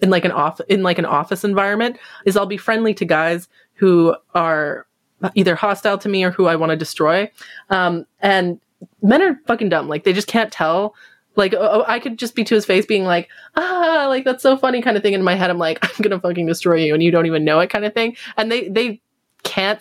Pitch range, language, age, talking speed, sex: 165-205 Hz, English, 20-39, 250 wpm, female